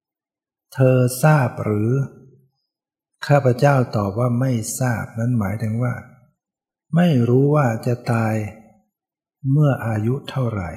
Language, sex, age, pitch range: Thai, male, 60-79, 110-135 Hz